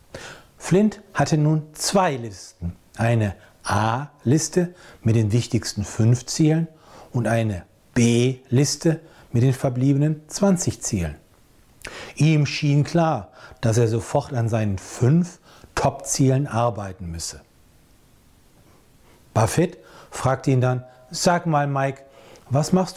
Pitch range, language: 115-150 Hz, German